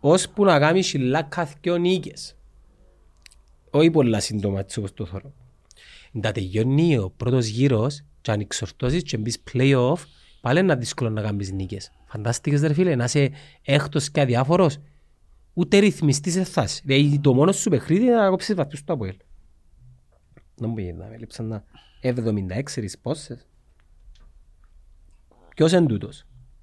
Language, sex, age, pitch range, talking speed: Greek, male, 30-49, 90-145 Hz, 120 wpm